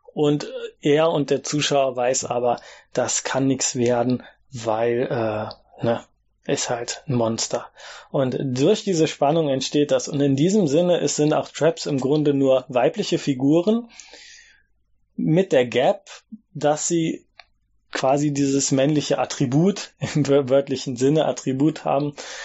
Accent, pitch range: German, 130-155 Hz